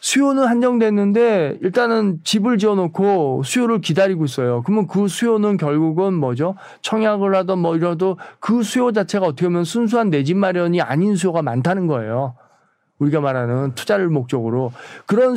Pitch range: 150-200 Hz